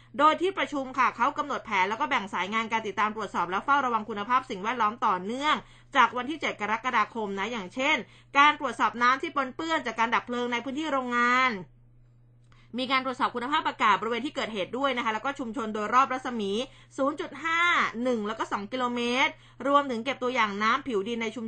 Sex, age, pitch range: female, 20-39, 220-275 Hz